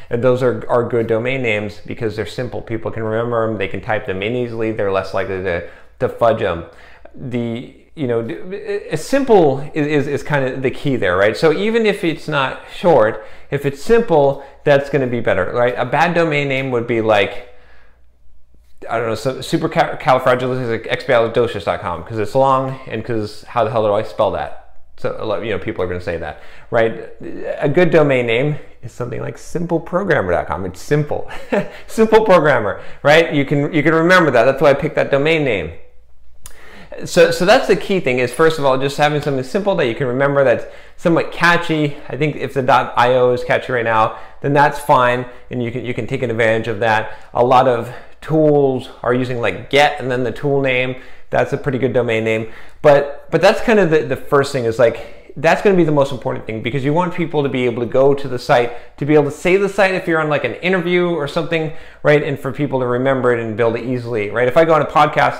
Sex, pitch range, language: male, 120-150 Hz, English